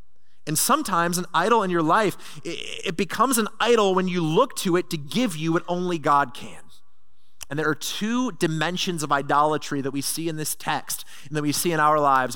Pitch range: 125-175 Hz